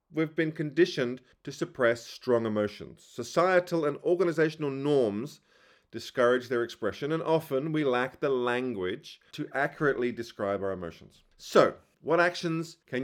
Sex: male